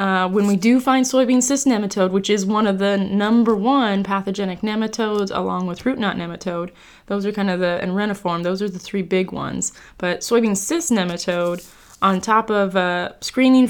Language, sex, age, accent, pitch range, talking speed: English, female, 20-39, American, 190-220 Hz, 190 wpm